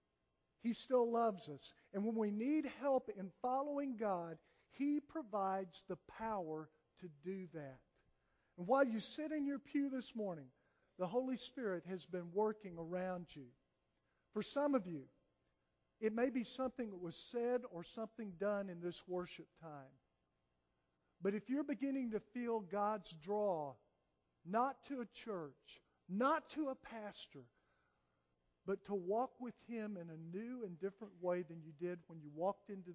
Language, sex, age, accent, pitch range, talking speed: English, male, 50-69, American, 125-210 Hz, 160 wpm